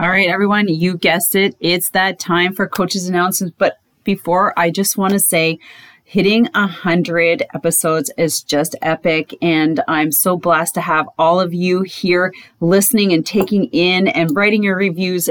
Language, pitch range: English, 175-240 Hz